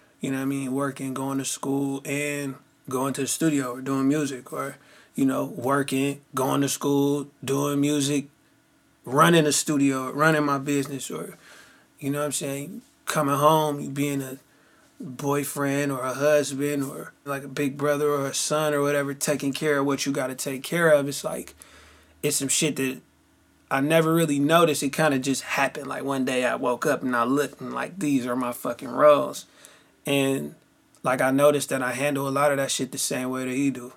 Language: English